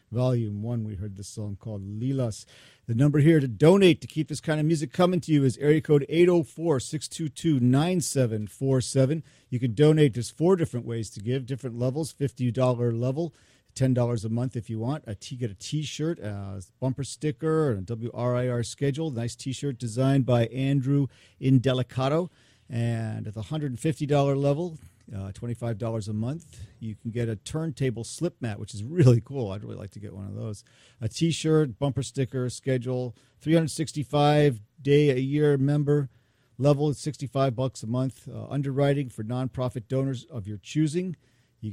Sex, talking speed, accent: male, 165 wpm, American